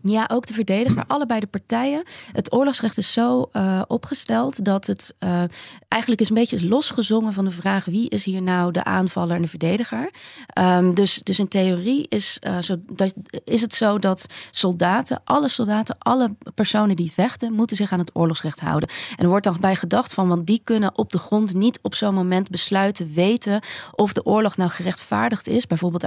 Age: 30-49